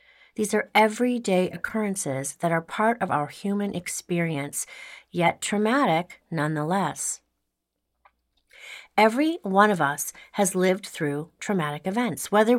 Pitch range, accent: 160-220 Hz, American